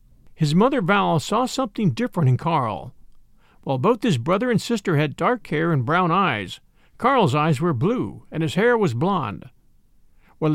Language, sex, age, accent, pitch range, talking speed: English, male, 50-69, American, 140-210 Hz, 170 wpm